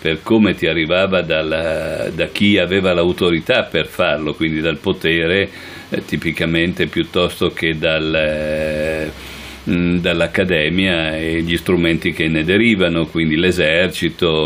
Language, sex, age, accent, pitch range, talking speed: Italian, male, 50-69, native, 80-90 Hz, 120 wpm